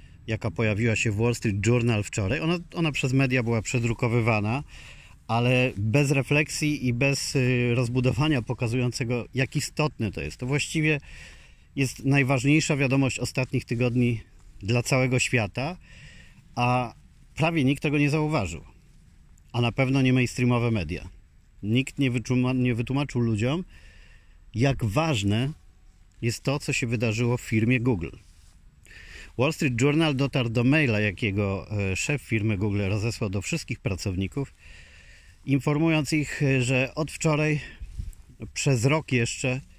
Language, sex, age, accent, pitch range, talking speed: Polish, male, 40-59, native, 100-135 Hz, 125 wpm